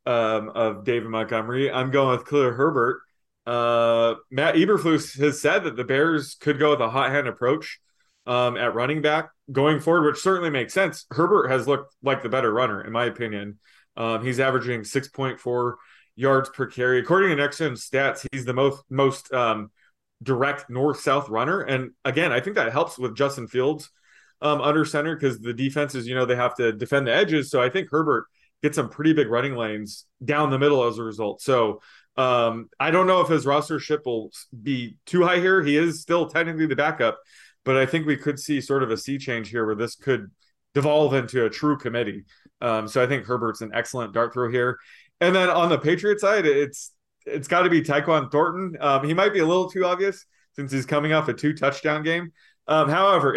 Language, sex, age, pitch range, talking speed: English, male, 20-39, 125-155 Hz, 205 wpm